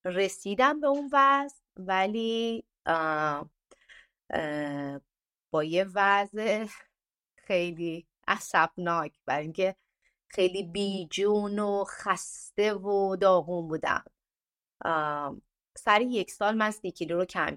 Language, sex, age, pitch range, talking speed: Persian, female, 30-49, 175-275 Hz, 95 wpm